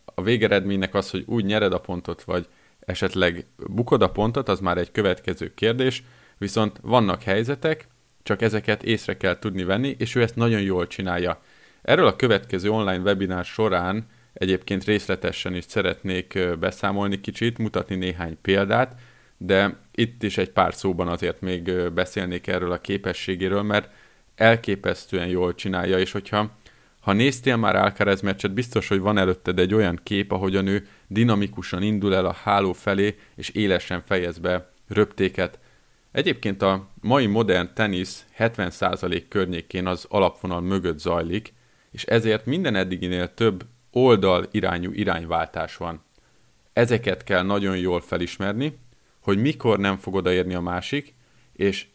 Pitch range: 90-110 Hz